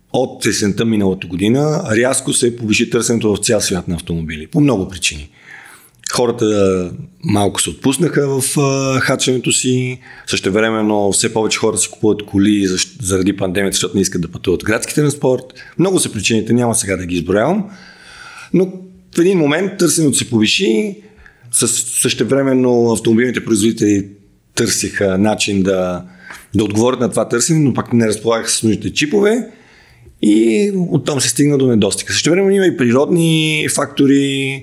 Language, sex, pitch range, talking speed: Bulgarian, male, 100-140 Hz, 150 wpm